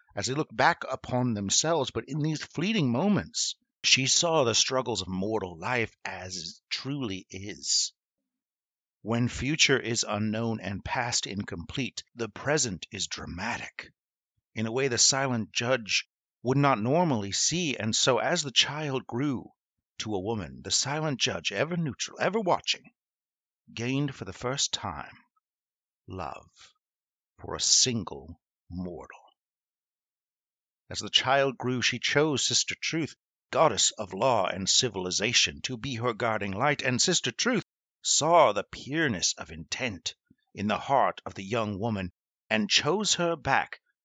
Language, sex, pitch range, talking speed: English, male, 100-140 Hz, 145 wpm